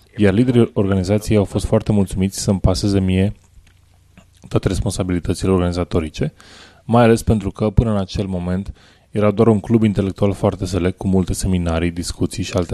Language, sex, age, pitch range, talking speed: Romanian, male, 20-39, 90-105 Hz, 160 wpm